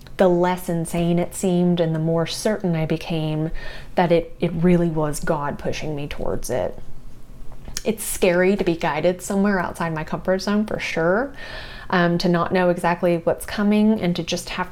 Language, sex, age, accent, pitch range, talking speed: English, female, 30-49, American, 165-195 Hz, 180 wpm